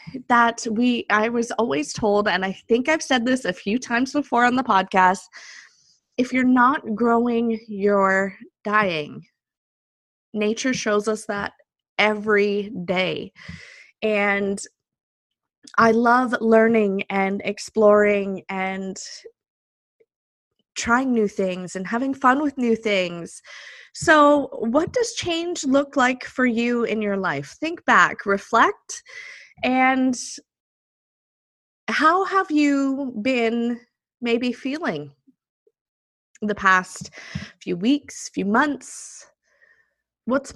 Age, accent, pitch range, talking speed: 20-39, American, 205-260 Hz, 110 wpm